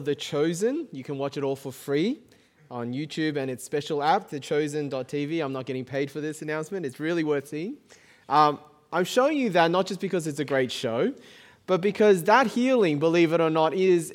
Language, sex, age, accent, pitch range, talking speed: English, male, 20-39, Australian, 155-215 Hz, 205 wpm